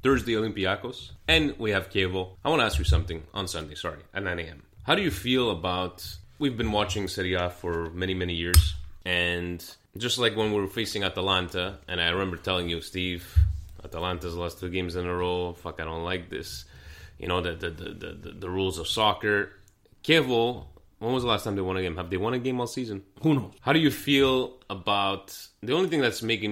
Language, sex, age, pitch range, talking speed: Italian, male, 30-49, 85-105 Hz, 220 wpm